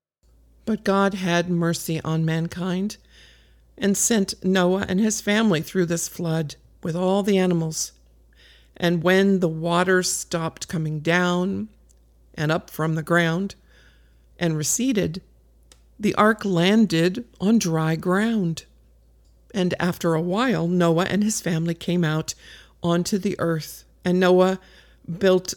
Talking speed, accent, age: 130 wpm, American, 50-69